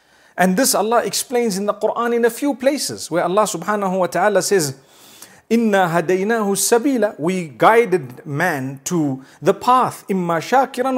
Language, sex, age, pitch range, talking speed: English, male, 40-59, 155-215 Hz, 150 wpm